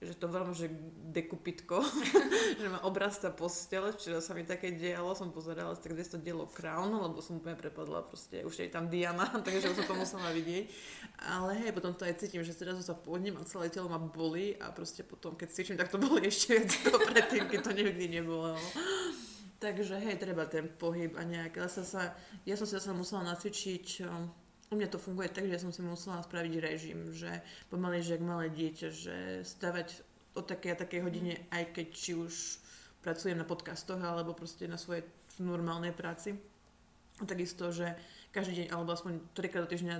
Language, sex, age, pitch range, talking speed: Slovak, female, 20-39, 170-190 Hz, 190 wpm